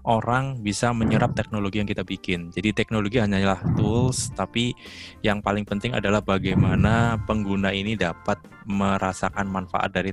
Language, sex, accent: Indonesian, male, native